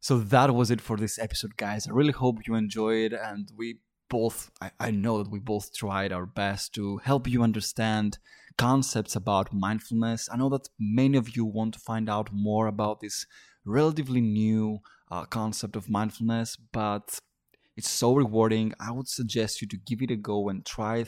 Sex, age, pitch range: male, 20-39, 105-115 Hz